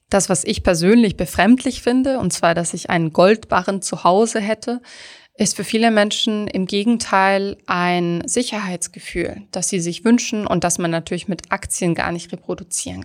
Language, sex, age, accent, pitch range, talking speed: German, female, 20-39, German, 170-200 Hz, 165 wpm